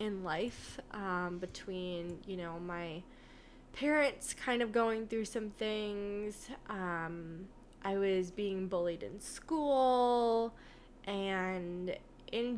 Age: 20-39